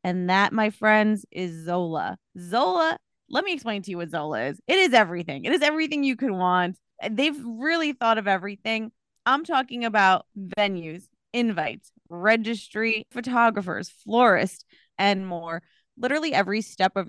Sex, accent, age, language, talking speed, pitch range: female, American, 20-39, English, 150 wpm, 185-245 Hz